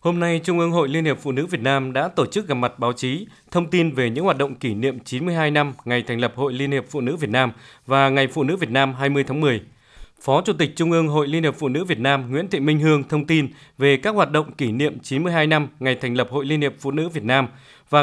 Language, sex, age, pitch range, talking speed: Vietnamese, male, 20-39, 135-160 Hz, 280 wpm